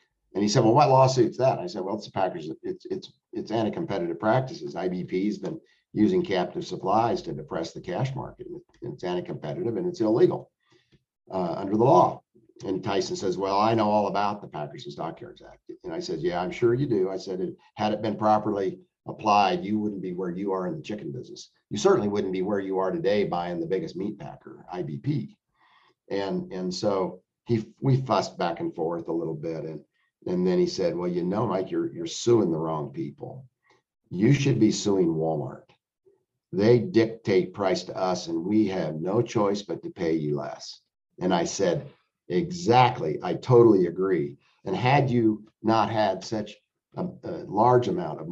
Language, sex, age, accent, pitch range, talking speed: English, male, 50-69, American, 100-170 Hz, 195 wpm